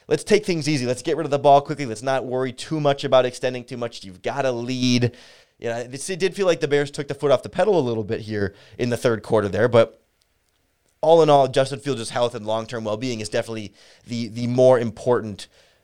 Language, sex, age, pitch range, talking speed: English, male, 30-49, 115-150 Hz, 230 wpm